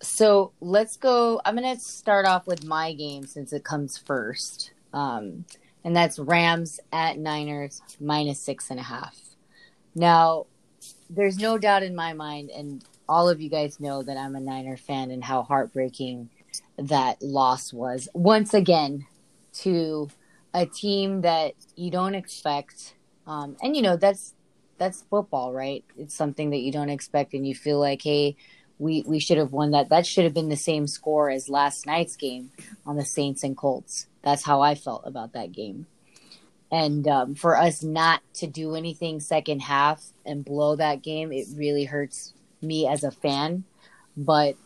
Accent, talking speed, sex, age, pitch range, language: American, 175 wpm, female, 20-39, 145-170 Hz, English